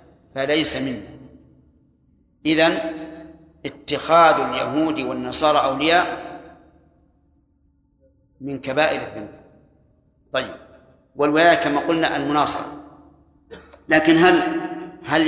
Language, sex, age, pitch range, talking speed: Arabic, male, 50-69, 140-165 Hz, 70 wpm